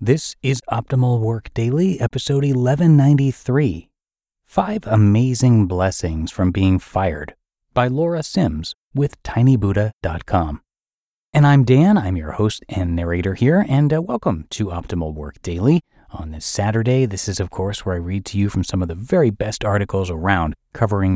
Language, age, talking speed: English, 30-49, 155 wpm